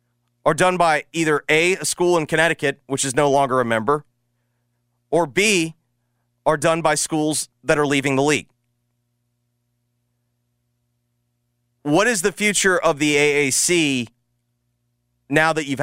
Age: 30-49